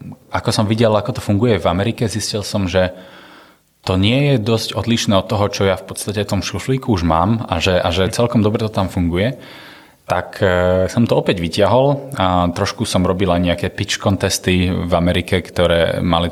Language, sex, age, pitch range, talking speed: Slovak, male, 30-49, 85-105 Hz, 190 wpm